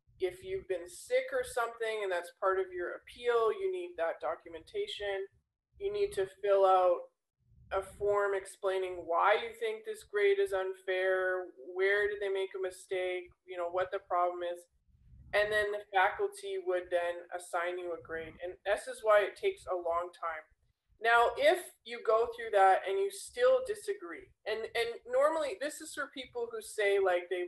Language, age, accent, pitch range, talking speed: English, 20-39, American, 180-240 Hz, 180 wpm